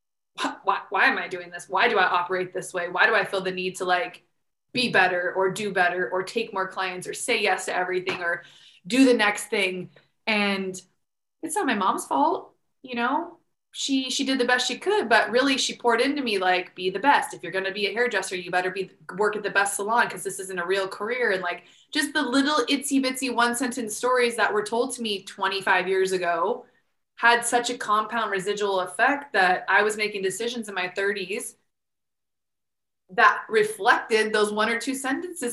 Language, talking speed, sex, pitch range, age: English, 210 wpm, female, 185-245 Hz, 20-39